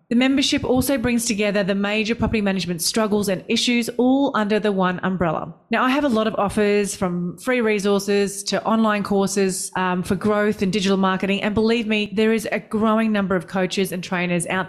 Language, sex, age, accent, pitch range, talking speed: English, female, 30-49, Australian, 185-215 Hz, 200 wpm